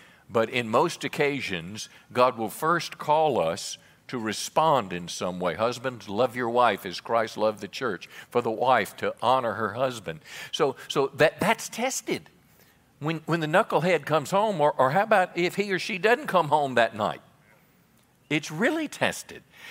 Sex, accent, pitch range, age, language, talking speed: male, American, 125-160 Hz, 50-69, English, 175 wpm